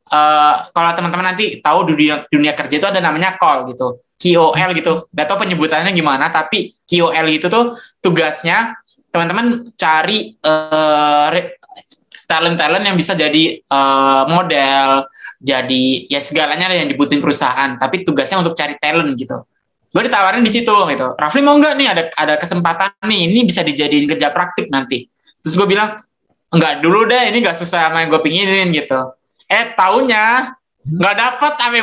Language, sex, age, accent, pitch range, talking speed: Indonesian, male, 20-39, native, 150-205 Hz, 160 wpm